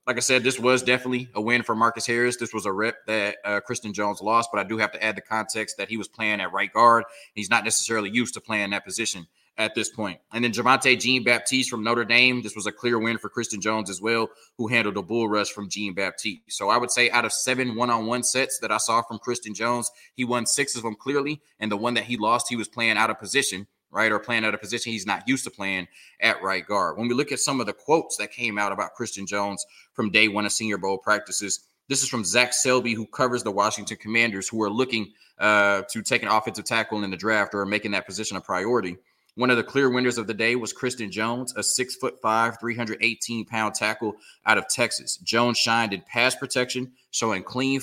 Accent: American